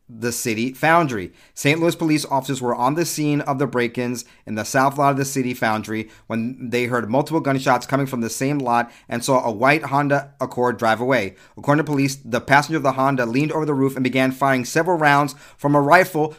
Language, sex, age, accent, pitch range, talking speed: English, male, 30-49, American, 115-145 Hz, 220 wpm